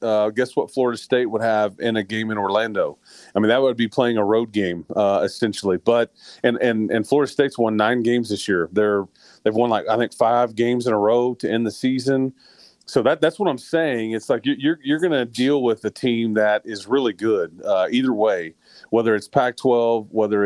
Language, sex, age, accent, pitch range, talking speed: English, male, 30-49, American, 105-130 Hz, 225 wpm